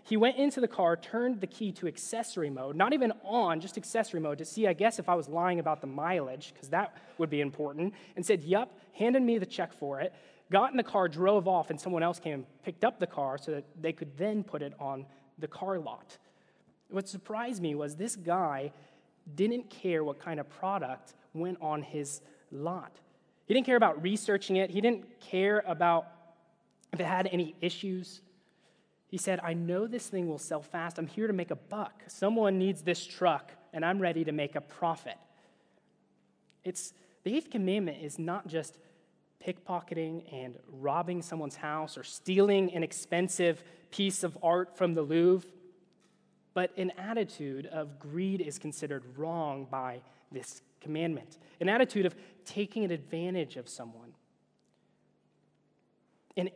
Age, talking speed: 20-39, 175 wpm